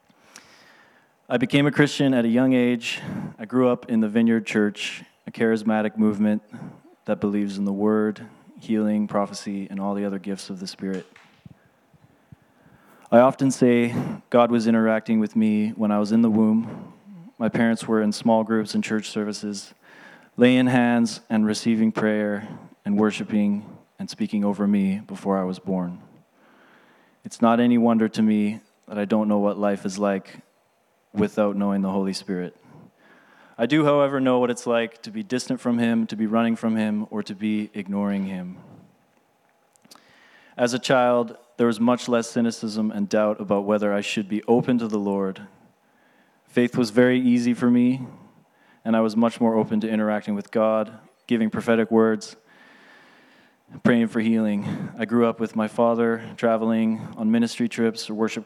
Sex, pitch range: male, 105-120 Hz